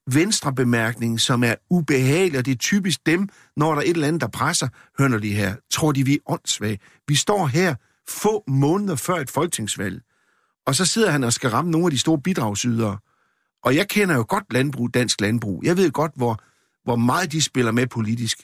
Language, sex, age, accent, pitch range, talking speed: Danish, male, 60-79, native, 115-165 Hz, 200 wpm